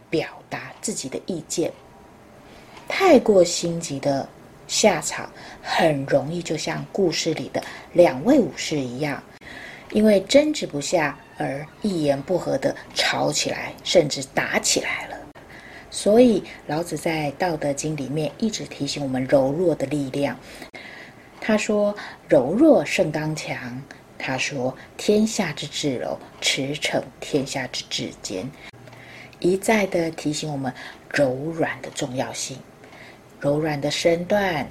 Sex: female